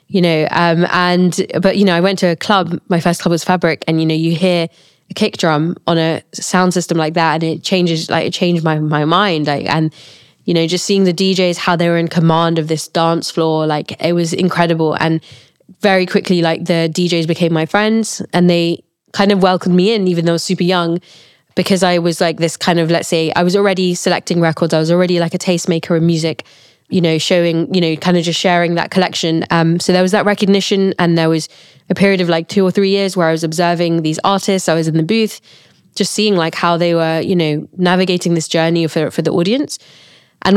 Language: English